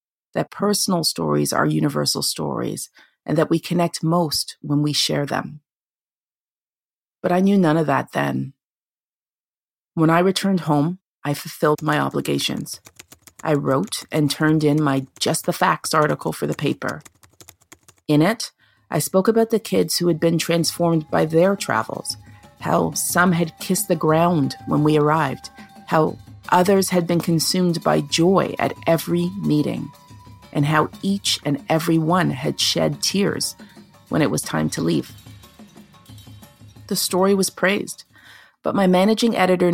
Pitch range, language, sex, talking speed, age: 145-190 Hz, English, female, 150 wpm, 40-59